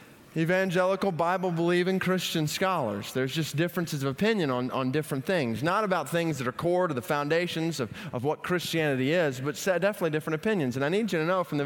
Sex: male